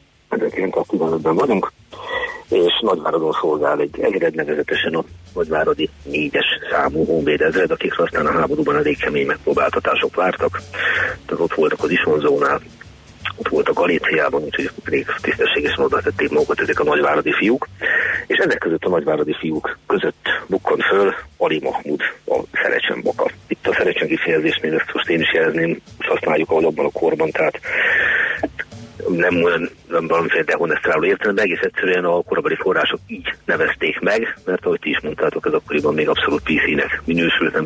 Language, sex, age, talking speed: Hungarian, male, 40-59, 145 wpm